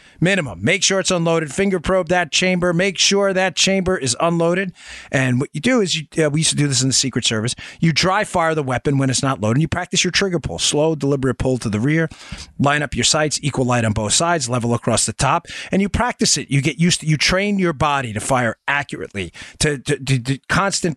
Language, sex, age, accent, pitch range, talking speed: English, male, 40-59, American, 125-160 Hz, 245 wpm